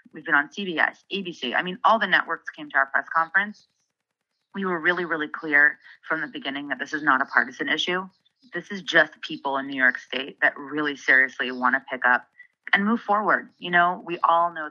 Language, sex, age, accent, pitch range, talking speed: English, female, 30-49, American, 135-175 Hz, 215 wpm